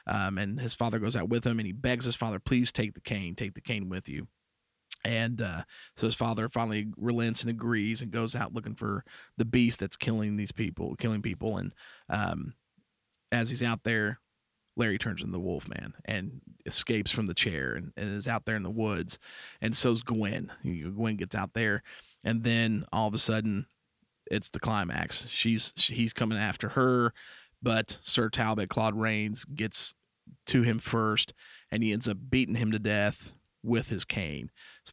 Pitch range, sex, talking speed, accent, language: 105-115 Hz, male, 190 wpm, American, English